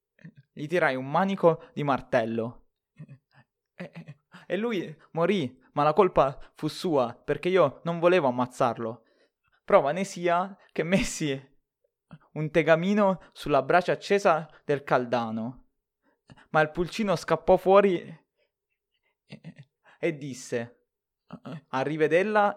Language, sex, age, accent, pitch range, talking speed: Italian, male, 20-39, native, 140-195 Hz, 105 wpm